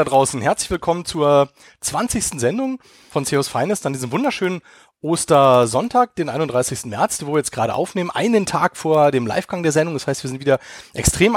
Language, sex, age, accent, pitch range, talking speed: German, male, 30-49, German, 135-180 Hz, 180 wpm